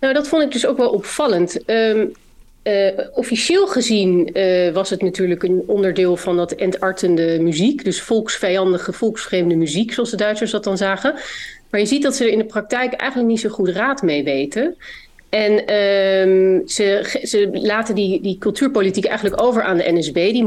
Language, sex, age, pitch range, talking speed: Dutch, female, 40-59, 190-230 Hz, 175 wpm